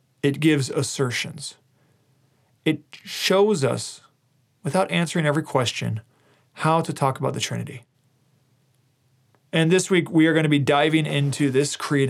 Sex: male